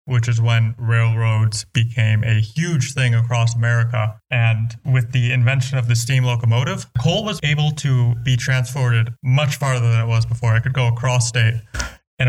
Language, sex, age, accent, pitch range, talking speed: English, male, 20-39, American, 115-130 Hz, 175 wpm